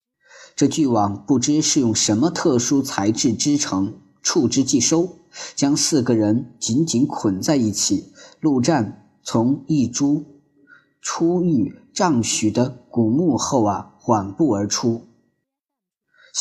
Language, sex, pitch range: Chinese, male, 115-175 Hz